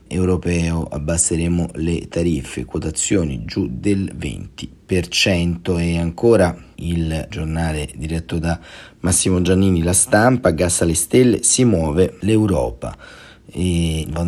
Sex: male